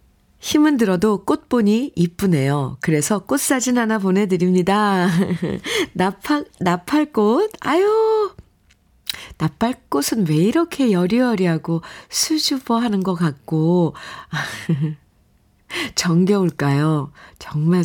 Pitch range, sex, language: 155-205 Hz, female, Korean